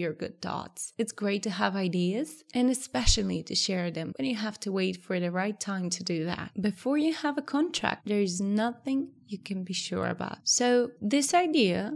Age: 20-39